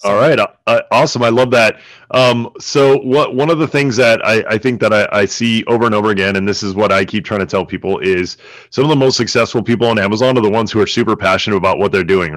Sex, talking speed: male, 270 wpm